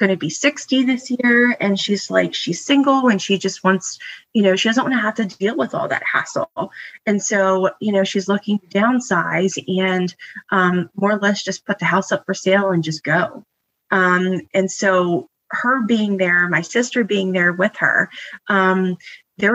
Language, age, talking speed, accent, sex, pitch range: English, 20-39, 200 wpm, American, female, 185-210 Hz